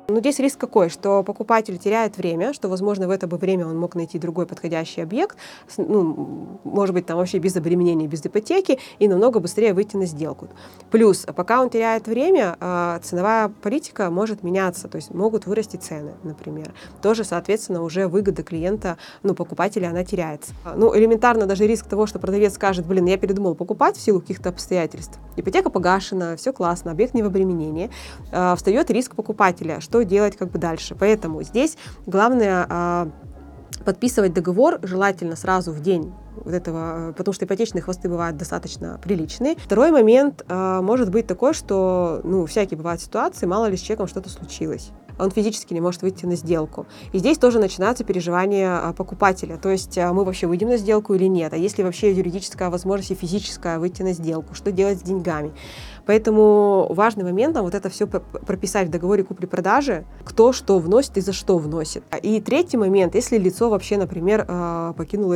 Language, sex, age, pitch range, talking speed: Russian, female, 20-39, 175-210 Hz, 170 wpm